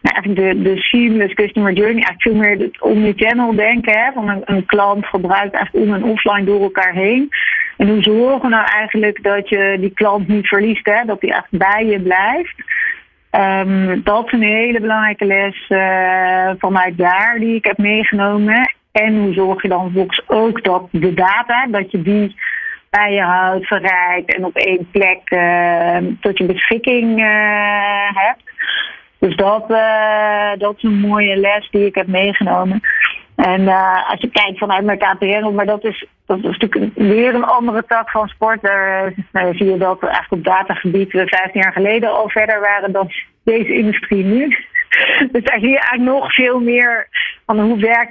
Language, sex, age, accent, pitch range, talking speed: Dutch, female, 40-59, Dutch, 185-220 Hz, 185 wpm